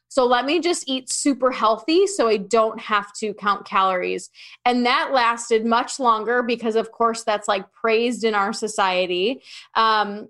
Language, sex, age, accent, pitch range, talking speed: English, female, 20-39, American, 205-245 Hz, 170 wpm